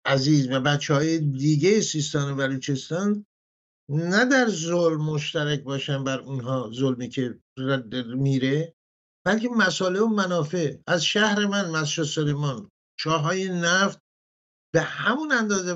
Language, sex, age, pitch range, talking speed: English, male, 50-69, 135-180 Hz, 120 wpm